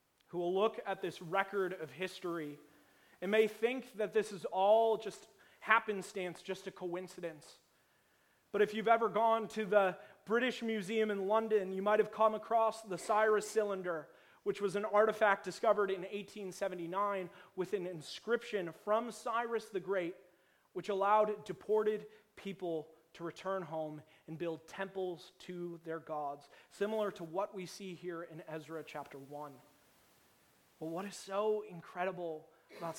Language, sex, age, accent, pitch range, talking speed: English, male, 30-49, American, 170-210 Hz, 150 wpm